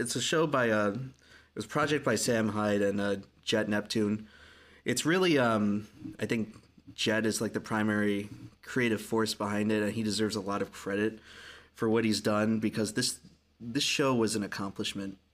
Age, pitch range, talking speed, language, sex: 20-39, 105-115 Hz, 190 wpm, English, male